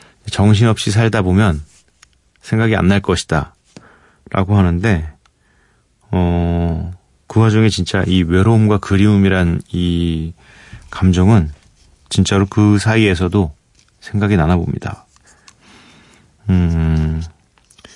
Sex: male